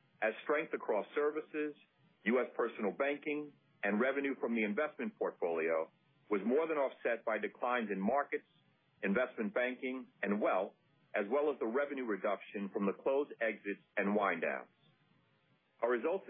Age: 50-69